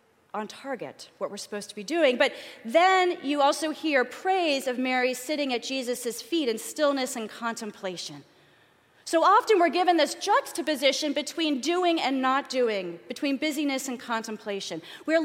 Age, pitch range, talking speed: 30-49, 205-310 Hz, 155 wpm